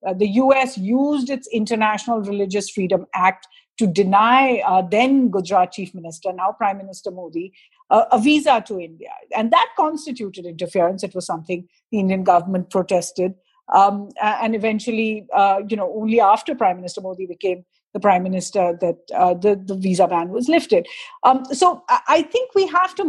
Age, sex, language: 50-69, female, English